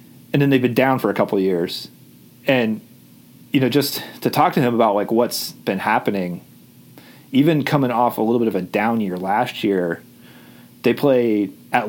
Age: 30-49